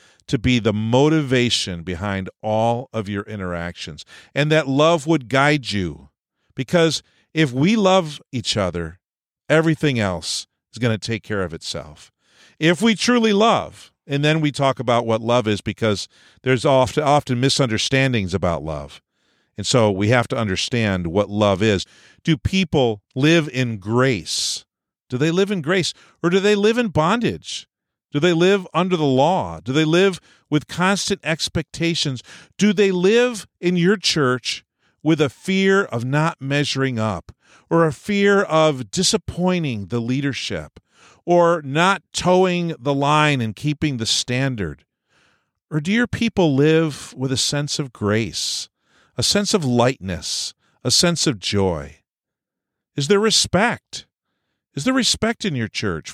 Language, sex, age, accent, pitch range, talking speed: English, male, 50-69, American, 110-170 Hz, 150 wpm